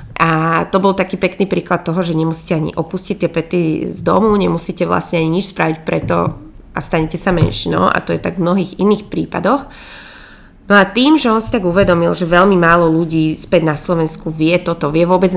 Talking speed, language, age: 205 wpm, Slovak, 20-39